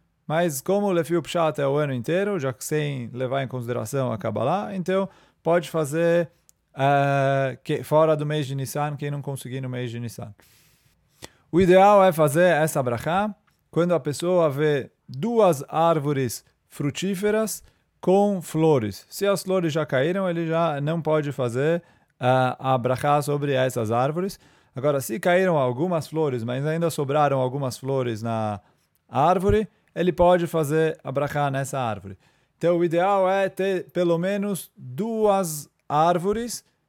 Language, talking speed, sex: English, 150 wpm, male